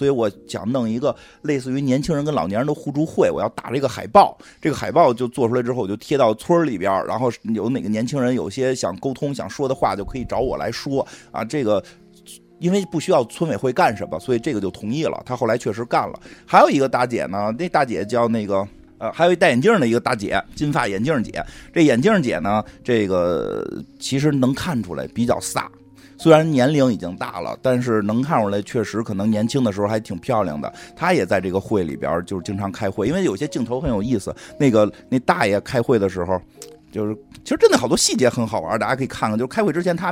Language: Chinese